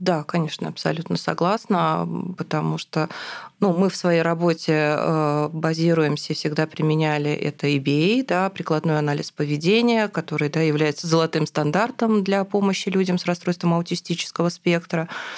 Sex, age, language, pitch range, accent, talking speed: female, 20-39, Russian, 155-185 Hz, native, 125 wpm